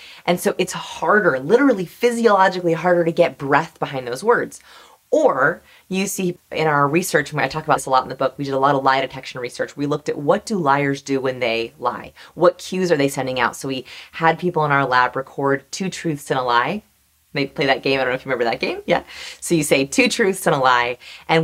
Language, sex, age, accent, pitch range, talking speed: English, female, 30-49, American, 130-175 Hz, 245 wpm